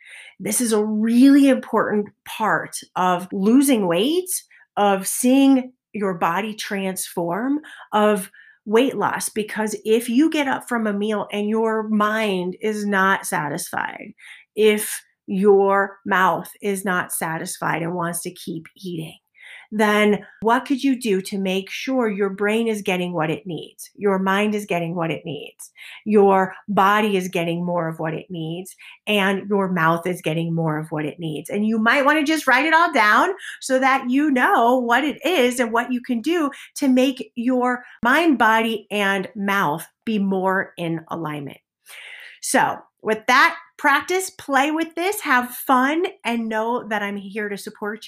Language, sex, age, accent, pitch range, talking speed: English, female, 40-59, American, 190-255 Hz, 165 wpm